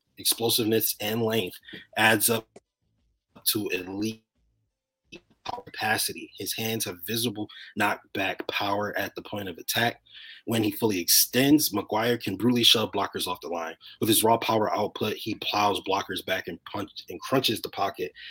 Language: English